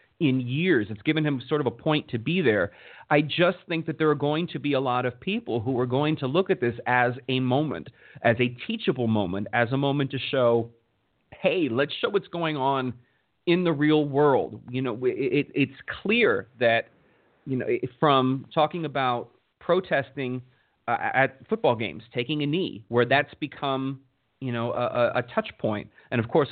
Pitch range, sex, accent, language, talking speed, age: 120-150 Hz, male, American, English, 190 wpm, 30-49